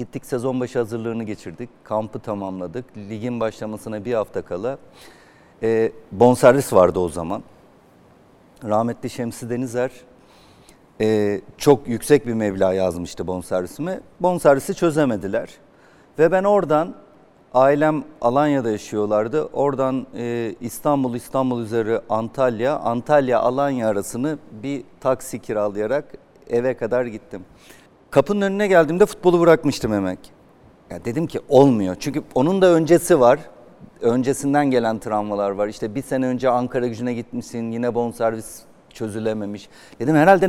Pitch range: 110-140 Hz